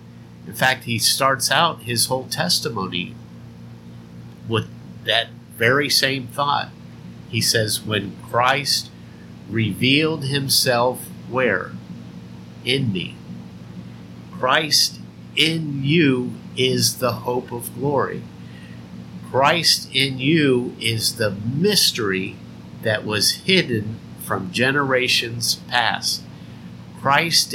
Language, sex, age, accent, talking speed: English, male, 50-69, American, 95 wpm